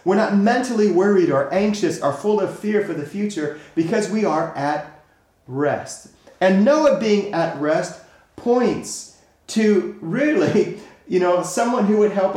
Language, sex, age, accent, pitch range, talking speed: English, male, 30-49, American, 150-200 Hz, 155 wpm